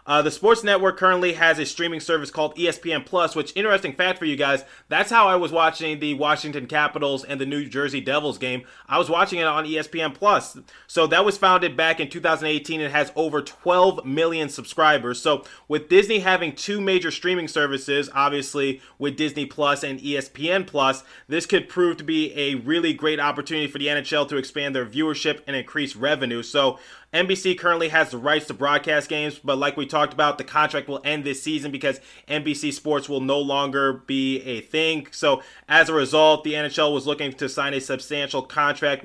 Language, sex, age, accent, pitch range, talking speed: English, male, 20-39, American, 140-160 Hz, 195 wpm